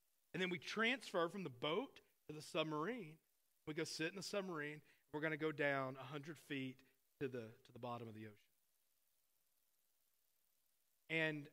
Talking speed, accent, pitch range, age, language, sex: 160 wpm, American, 140-175 Hz, 40-59, English, male